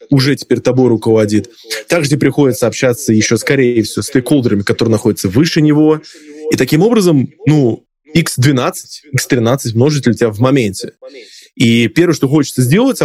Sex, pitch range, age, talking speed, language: male, 110-150 Hz, 20-39, 150 wpm, Russian